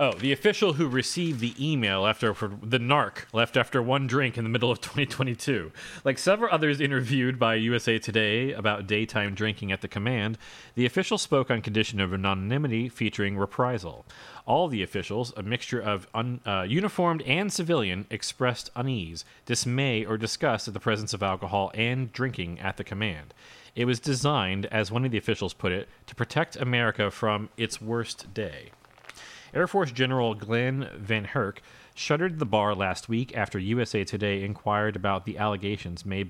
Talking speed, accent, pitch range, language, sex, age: 170 wpm, American, 100-125 Hz, English, male, 30-49